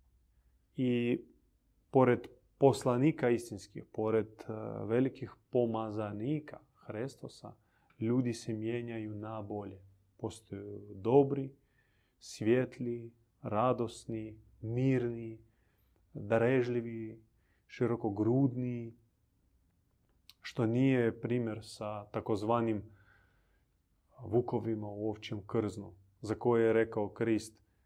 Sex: male